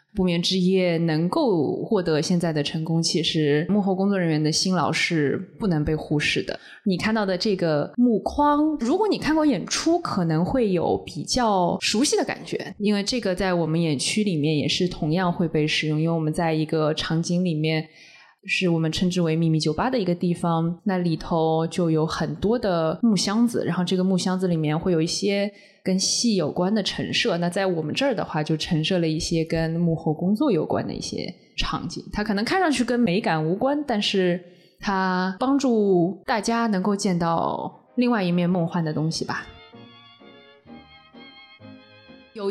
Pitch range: 165-215 Hz